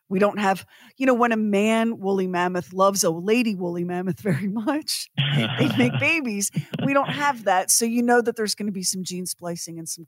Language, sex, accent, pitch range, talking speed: English, female, American, 175-230 Hz, 220 wpm